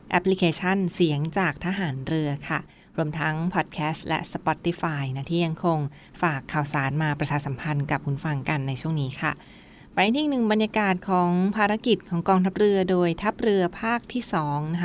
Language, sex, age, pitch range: Thai, female, 20-39, 160-185 Hz